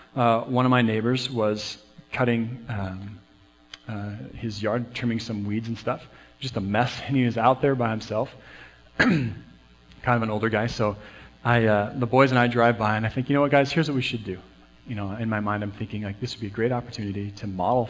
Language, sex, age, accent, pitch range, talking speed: English, male, 40-59, American, 105-135 Hz, 230 wpm